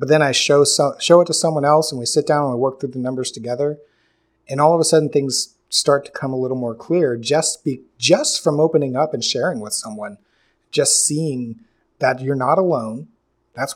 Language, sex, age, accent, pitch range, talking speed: English, male, 30-49, American, 125-155 Hz, 215 wpm